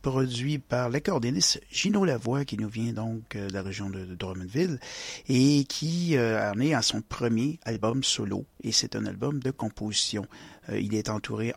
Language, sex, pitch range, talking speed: French, male, 115-135 Hz, 180 wpm